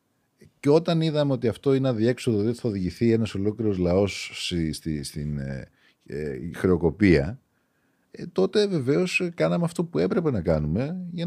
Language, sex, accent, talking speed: Greek, male, native, 160 wpm